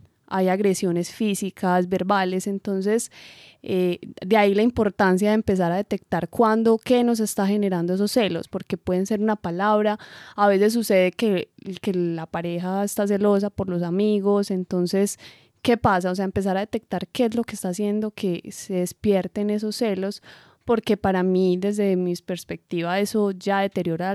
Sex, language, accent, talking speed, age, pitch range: female, Spanish, Colombian, 165 wpm, 20-39, 185-210 Hz